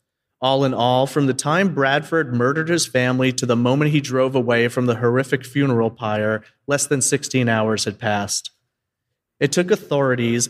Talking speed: 170 wpm